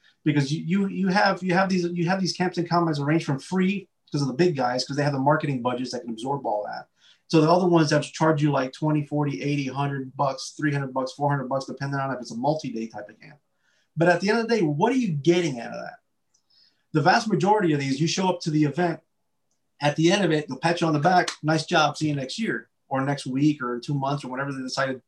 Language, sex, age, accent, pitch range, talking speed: English, male, 30-49, American, 130-170 Hz, 270 wpm